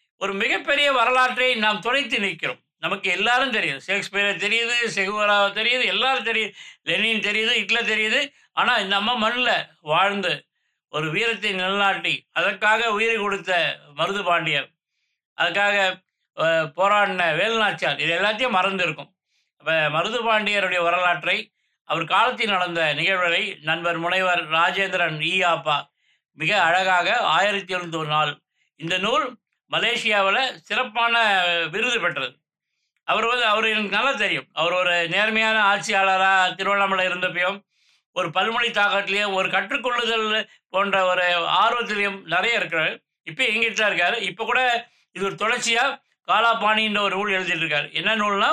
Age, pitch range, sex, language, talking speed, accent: 20-39, 175-220 Hz, male, Tamil, 120 wpm, native